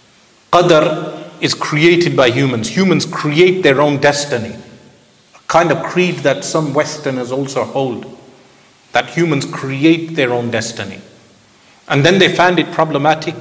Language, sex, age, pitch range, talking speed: English, male, 40-59, 135-170 Hz, 140 wpm